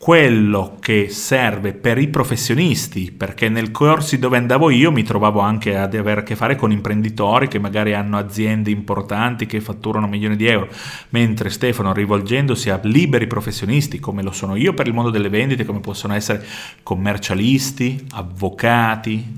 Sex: male